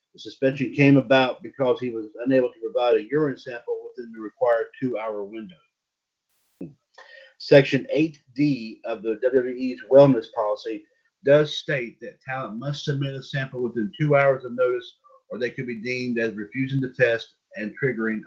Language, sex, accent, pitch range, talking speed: English, male, American, 120-145 Hz, 160 wpm